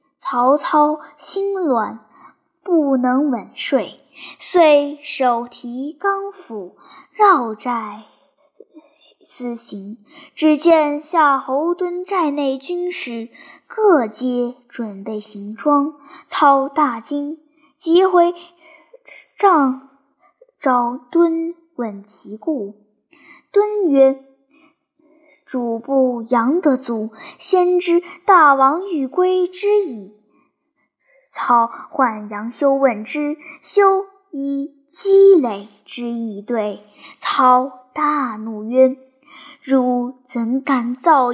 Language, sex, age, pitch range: Chinese, male, 10-29, 245-330 Hz